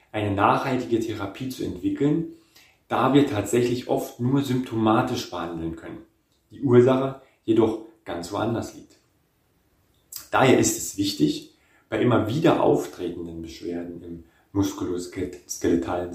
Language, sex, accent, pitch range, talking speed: German, male, German, 100-145 Hz, 115 wpm